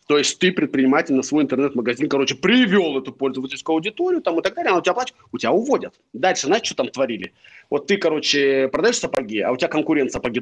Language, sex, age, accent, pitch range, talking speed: Russian, male, 30-49, native, 130-205 Hz, 220 wpm